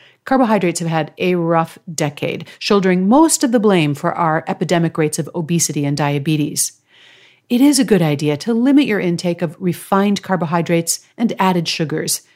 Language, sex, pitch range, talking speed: English, female, 165-230 Hz, 165 wpm